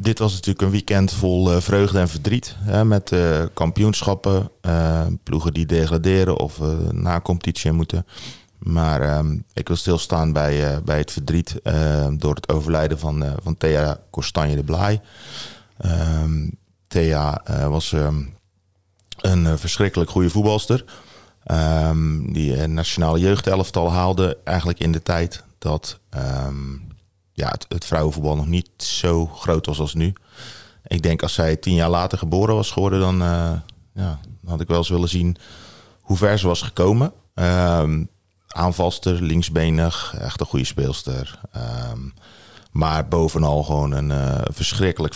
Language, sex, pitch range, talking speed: Dutch, male, 75-95 Hz, 155 wpm